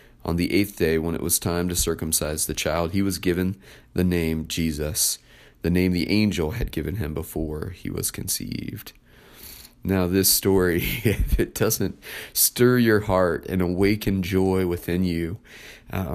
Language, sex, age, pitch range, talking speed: English, male, 30-49, 85-100 Hz, 165 wpm